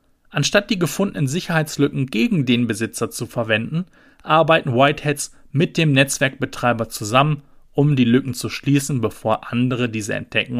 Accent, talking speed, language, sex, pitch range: German, 135 wpm, German, male, 120-155 Hz